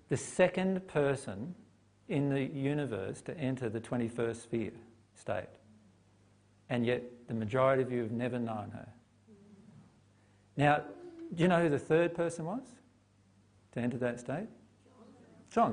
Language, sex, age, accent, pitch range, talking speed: English, male, 50-69, Australian, 110-150 Hz, 135 wpm